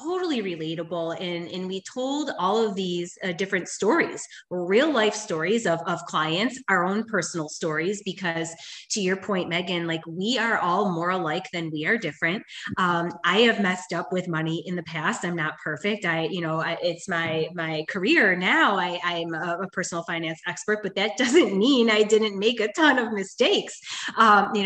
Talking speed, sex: 185 wpm, female